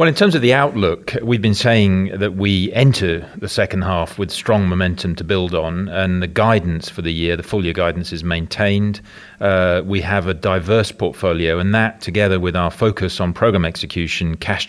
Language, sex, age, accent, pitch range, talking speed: English, male, 40-59, British, 85-100 Hz, 200 wpm